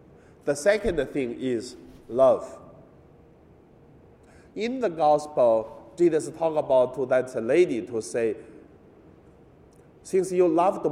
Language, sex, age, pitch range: Chinese, male, 50-69, 135-175 Hz